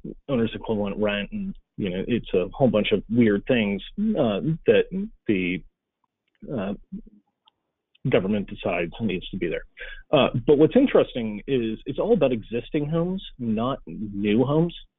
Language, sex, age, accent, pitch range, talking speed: English, male, 30-49, American, 105-155 Hz, 145 wpm